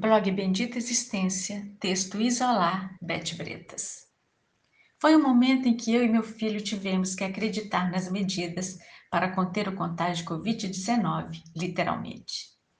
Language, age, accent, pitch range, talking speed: Portuguese, 50-69, Brazilian, 180-230 Hz, 130 wpm